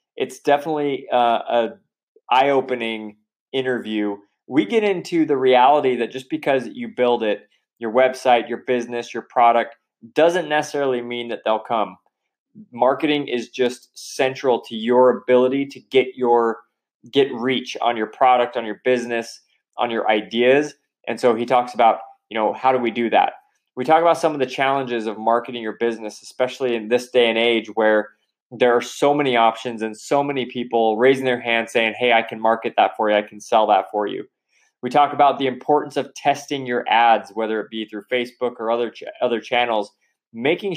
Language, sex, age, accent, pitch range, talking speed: English, male, 20-39, American, 115-140 Hz, 185 wpm